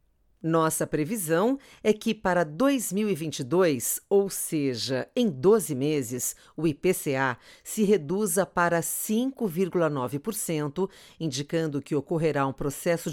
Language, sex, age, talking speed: Portuguese, female, 50-69, 100 wpm